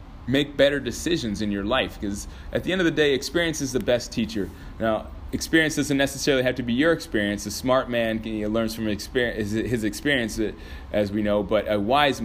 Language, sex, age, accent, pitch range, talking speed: English, male, 30-49, American, 100-135 Hz, 205 wpm